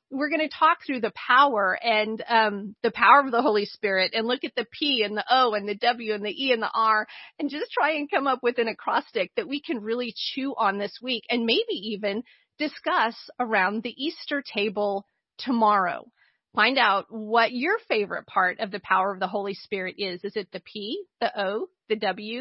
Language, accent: English, American